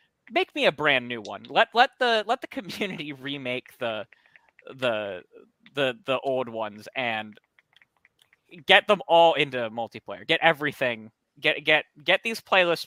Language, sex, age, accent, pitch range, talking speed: English, male, 20-39, American, 125-195 Hz, 150 wpm